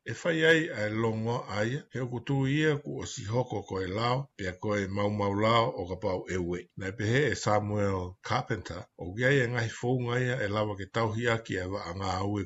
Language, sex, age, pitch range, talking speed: English, male, 60-79, 95-125 Hz, 170 wpm